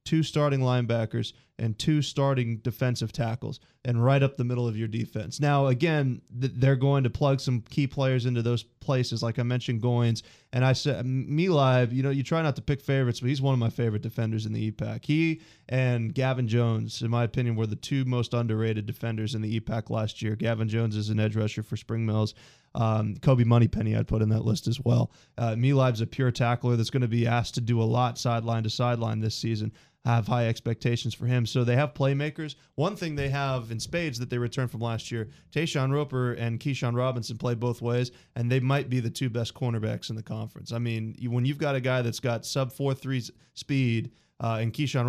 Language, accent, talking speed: English, American, 220 wpm